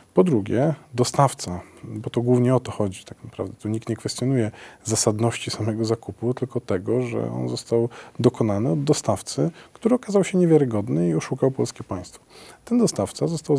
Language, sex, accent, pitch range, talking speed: Polish, male, native, 110-140 Hz, 165 wpm